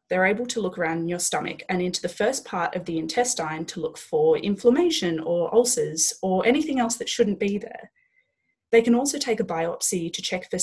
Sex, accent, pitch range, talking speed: female, Australian, 185-245 Hz, 215 wpm